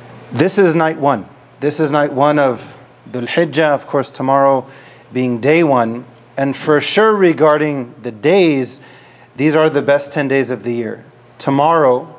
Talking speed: 160 wpm